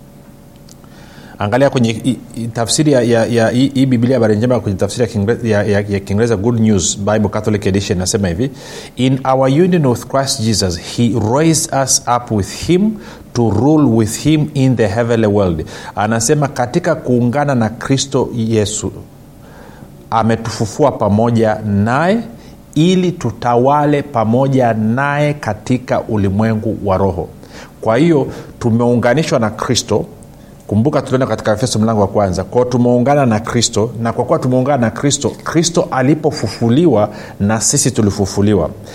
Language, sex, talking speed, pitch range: Swahili, male, 135 wpm, 110-135 Hz